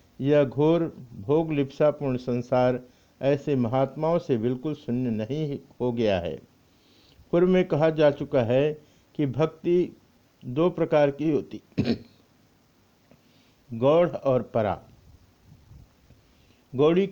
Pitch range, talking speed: 120-155 Hz, 105 wpm